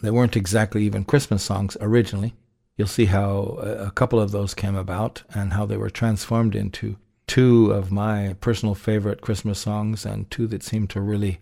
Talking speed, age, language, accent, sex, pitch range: 185 wpm, 60-79, English, American, male, 105-120 Hz